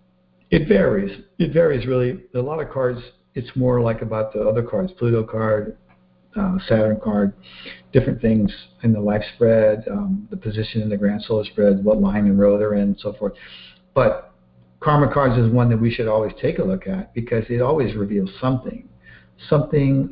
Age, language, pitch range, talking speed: 60-79, English, 100-135 Hz, 190 wpm